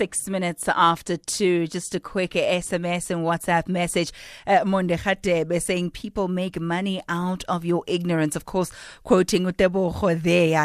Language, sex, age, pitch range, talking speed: English, female, 30-49, 155-190 Hz, 150 wpm